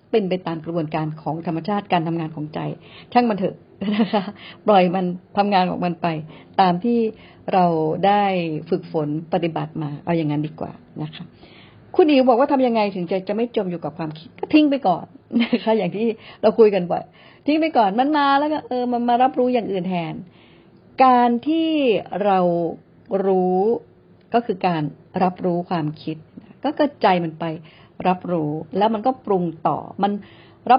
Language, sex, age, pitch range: Thai, female, 70-89, 170-230 Hz